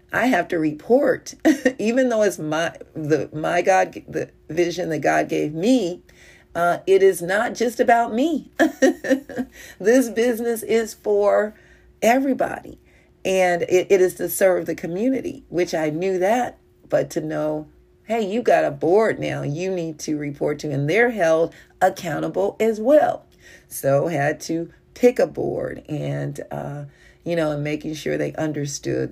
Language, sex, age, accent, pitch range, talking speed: English, female, 40-59, American, 150-225 Hz, 155 wpm